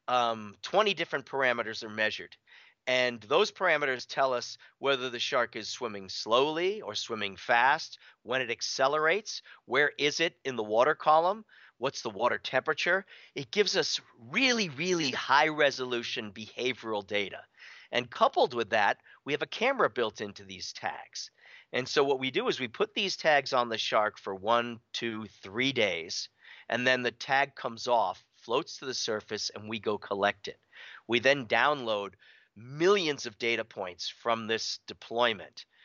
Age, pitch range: 40-59, 115-140 Hz